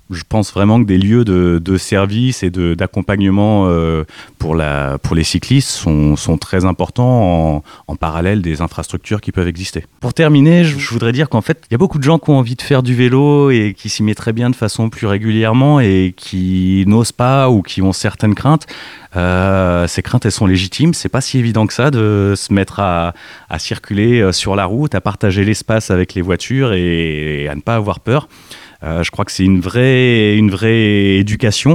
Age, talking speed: 30-49, 210 wpm